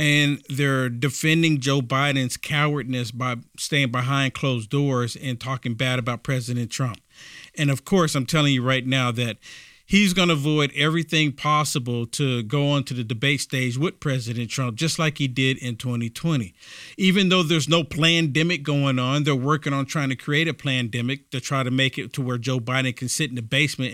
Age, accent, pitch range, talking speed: 50-69, American, 130-165 Hz, 195 wpm